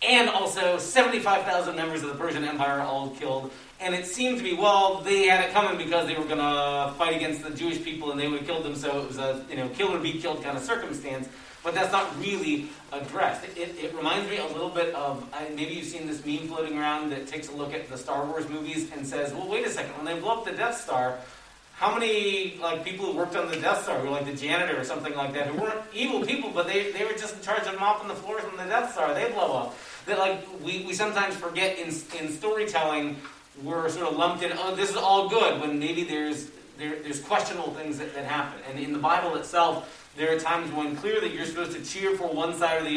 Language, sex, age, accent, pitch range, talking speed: English, male, 40-59, American, 145-185 Hz, 255 wpm